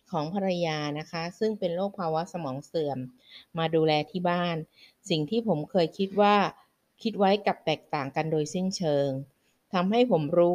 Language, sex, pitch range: Thai, female, 155-190 Hz